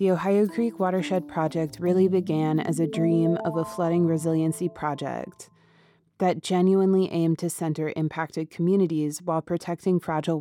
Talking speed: 145 wpm